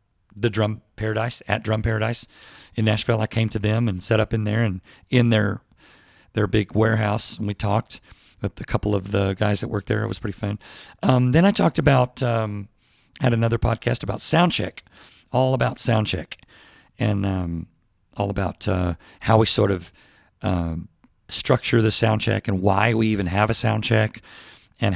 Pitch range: 100-115 Hz